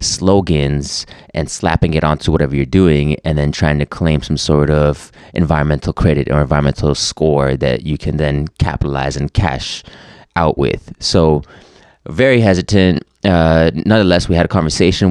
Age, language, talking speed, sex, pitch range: 20-39, English, 155 wpm, male, 75-85 Hz